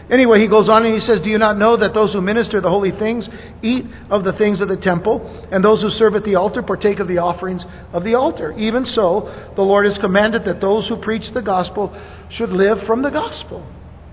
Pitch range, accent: 200-240 Hz, American